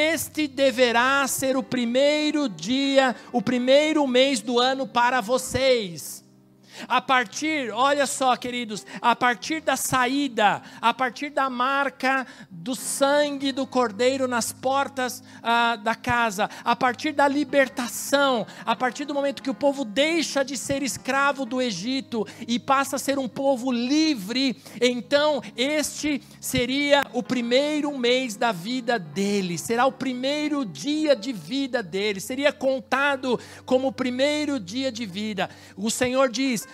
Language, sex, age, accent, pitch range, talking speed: Portuguese, male, 50-69, Brazilian, 225-275 Hz, 140 wpm